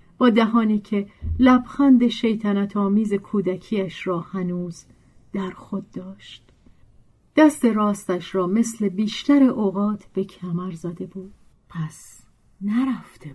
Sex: female